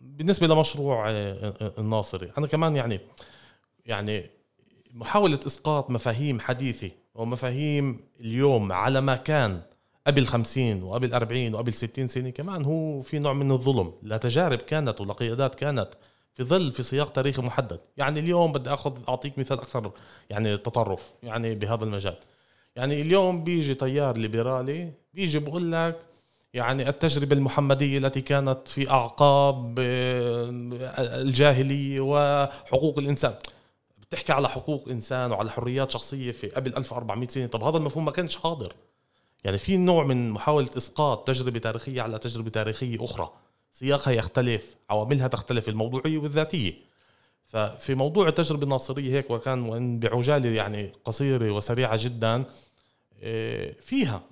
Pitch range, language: 115-145 Hz, Arabic